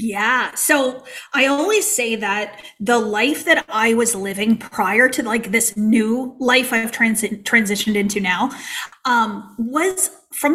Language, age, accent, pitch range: English, 30-49, American, 200-250 Hz